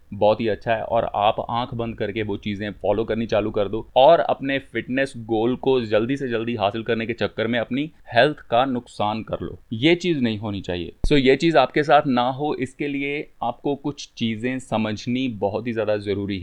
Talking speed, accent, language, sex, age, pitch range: 210 wpm, native, Hindi, male, 30-49, 110-140 Hz